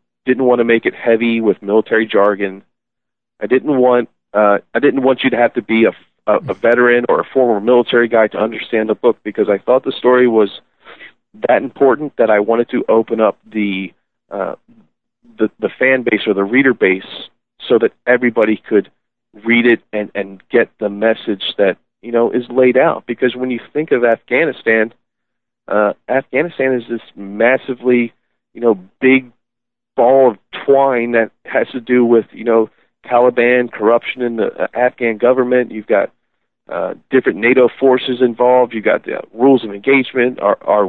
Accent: American